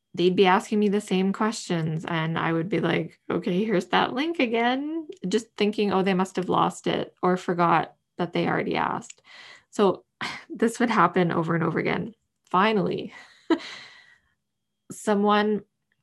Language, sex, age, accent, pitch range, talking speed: English, female, 20-39, American, 180-215 Hz, 155 wpm